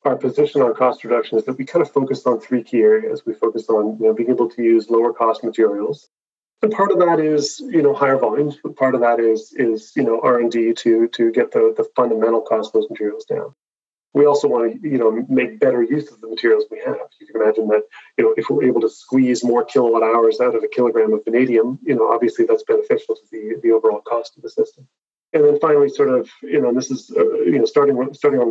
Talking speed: 250 wpm